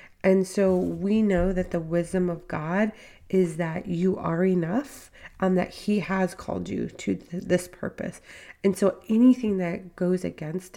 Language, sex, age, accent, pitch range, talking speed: English, female, 30-49, American, 170-195 Hz, 160 wpm